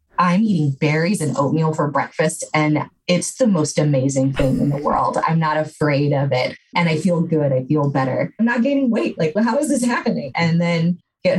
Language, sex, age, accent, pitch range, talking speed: English, female, 20-39, American, 140-165 Hz, 215 wpm